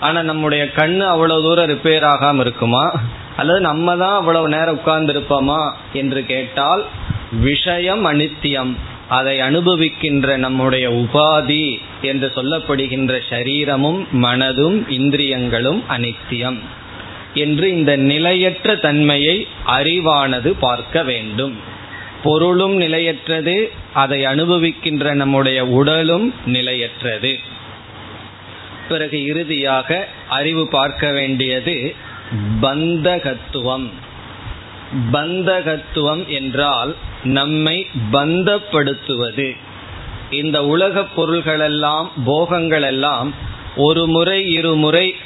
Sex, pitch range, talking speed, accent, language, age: male, 125-160 Hz, 60 wpm, native, Tamil, 20-39